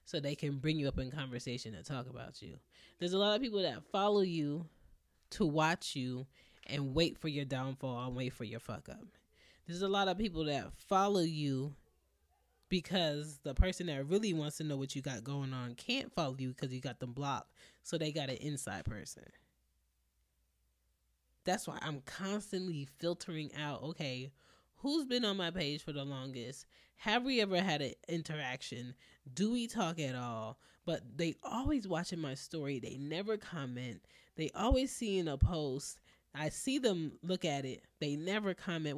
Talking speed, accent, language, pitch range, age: 185 wpm, American, English, 110-175 Hz, 20-39